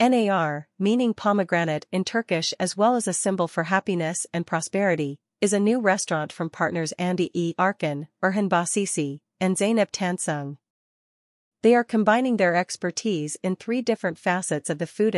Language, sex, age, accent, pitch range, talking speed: English, female, 40-59, American, 160-200 Hz, 160 wpm